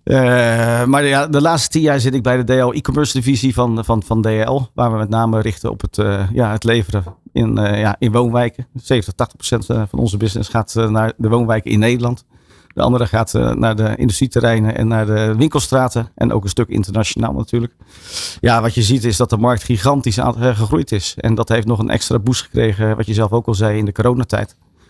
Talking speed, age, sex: 215 wpm, 50-69, male